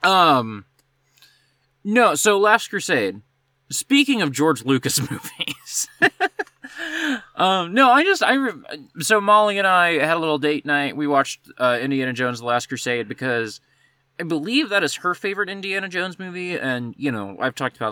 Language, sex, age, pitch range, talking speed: English, male, 20-39, 130-185 Hz, 165 wpm